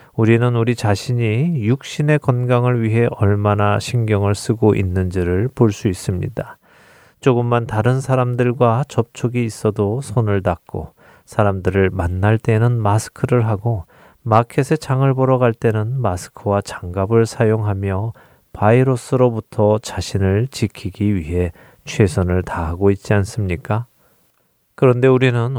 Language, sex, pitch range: Korean, male, 100-125 Hz